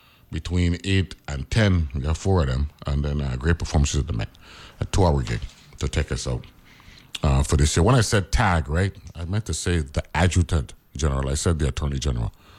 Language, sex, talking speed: English, male, 215 wpm